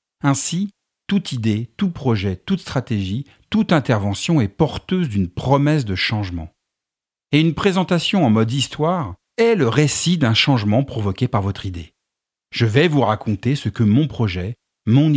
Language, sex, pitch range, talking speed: French, male, 110-155 Hz, 155 wpm